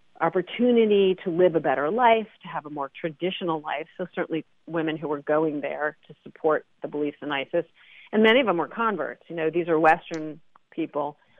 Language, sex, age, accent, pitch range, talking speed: English, female, 40-59, American, 160-210 Hz, 195 wpm